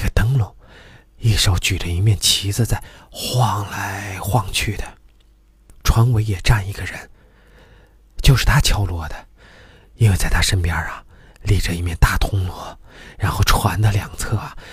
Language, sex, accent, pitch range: Chinese, male, native, 90-115 Hz